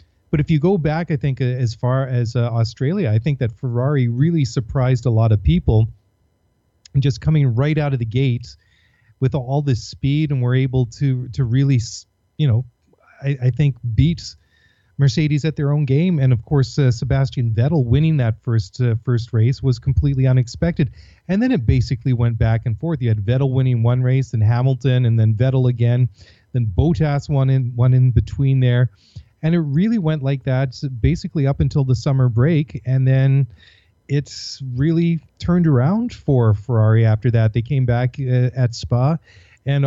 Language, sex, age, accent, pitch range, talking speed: English, male, 30-49, American, 115-140 Hz, 185 wpm